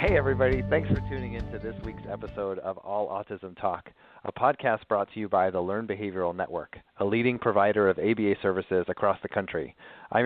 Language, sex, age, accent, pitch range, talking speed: English, male, 30-49, American, 100-115 Hz, 200 wpm